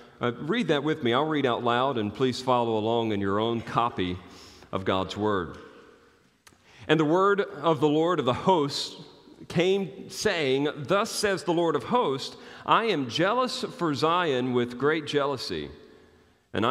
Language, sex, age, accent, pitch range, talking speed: English, male, 40-59, American, 120-155 Hz, 165 wpm